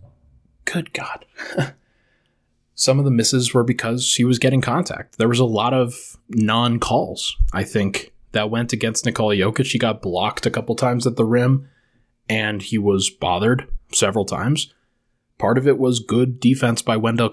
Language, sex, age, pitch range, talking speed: English, male, 20-39, 105-125 Hz, 165 wpm